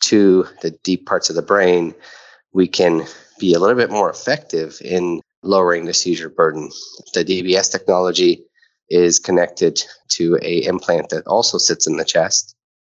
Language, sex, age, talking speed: English, male, 30-49, 160 wpm